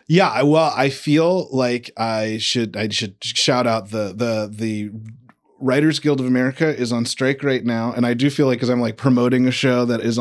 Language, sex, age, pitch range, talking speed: English, male, 20-39, 110-135 Hz, 210 wpm